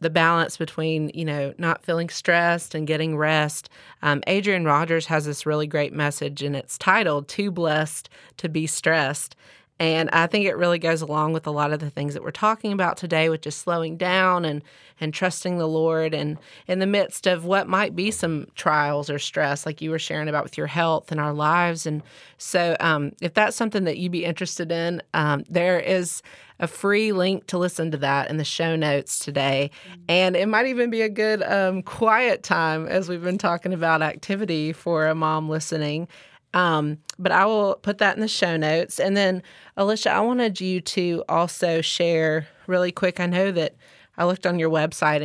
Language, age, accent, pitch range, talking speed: English, 30-49, American, 155-180 Hz, 200 wpm